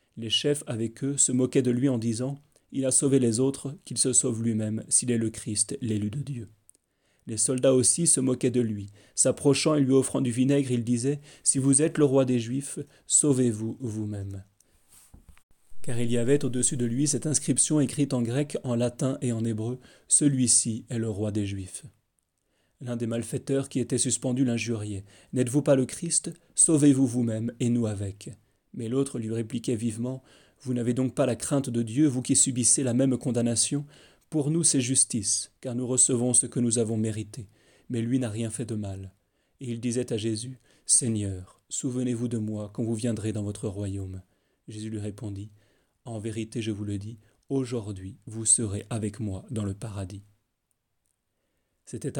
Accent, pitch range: French, 110-135 Hz